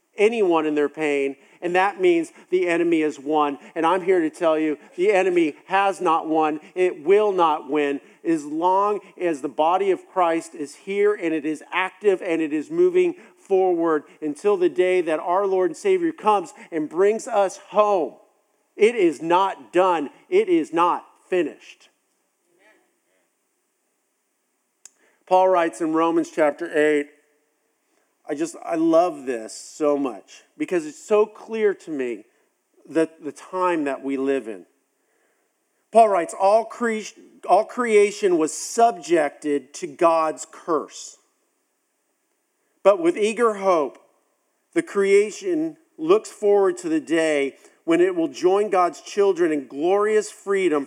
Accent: American